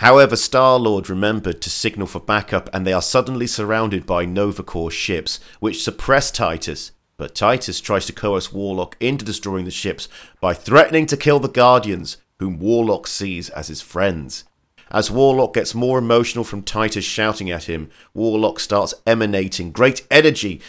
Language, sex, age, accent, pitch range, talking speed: English, male, 40-59, British, 95-120 Hz, 160 wpm